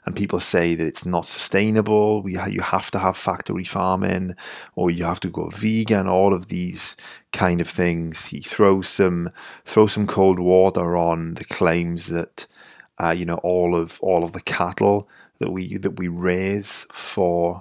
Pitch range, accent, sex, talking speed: 85-95 Hz, British, male, 175 wpm